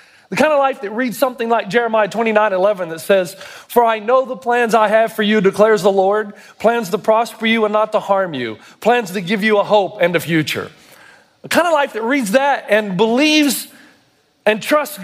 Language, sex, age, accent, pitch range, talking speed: English, male, 40-59, American, 210-275 Hz, 220 wpm